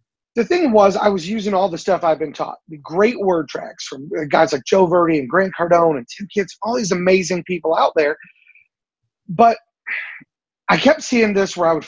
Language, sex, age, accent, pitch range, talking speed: English, male, 30-49, American, 160-205 Hz, 205 wpm